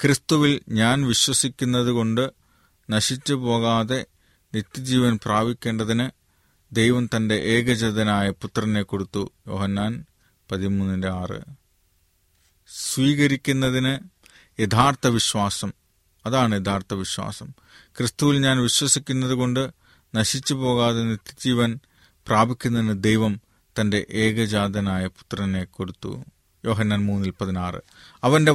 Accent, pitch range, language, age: native, 105-130 Hz, Malayalam, 30-49